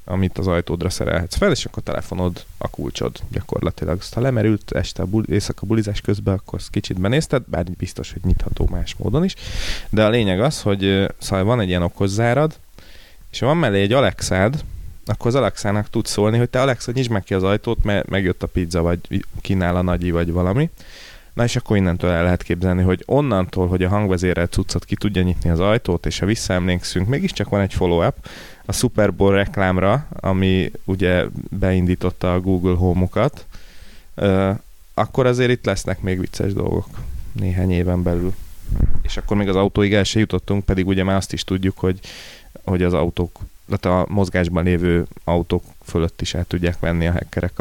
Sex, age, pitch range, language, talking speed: male, 30-49, 90-105 Hz, Hungarian, 180 wpm